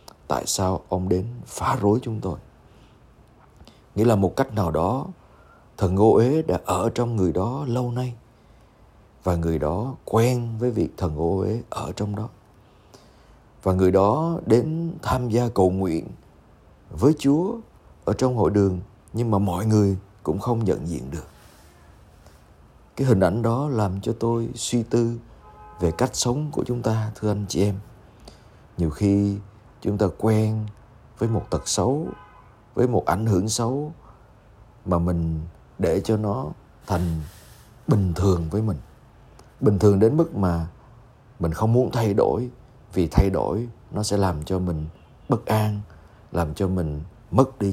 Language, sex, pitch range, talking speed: Vietnamese, male, 90-115 Hz, 160 wpm